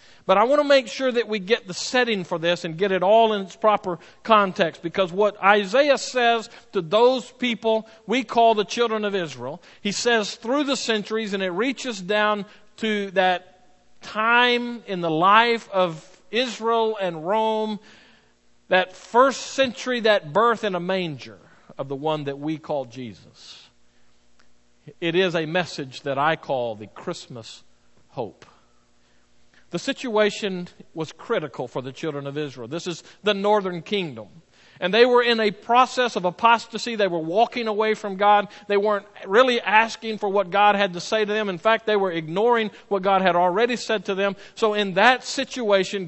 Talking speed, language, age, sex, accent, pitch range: 175 wpm, English, 50-69, male, American, 180-230 Hz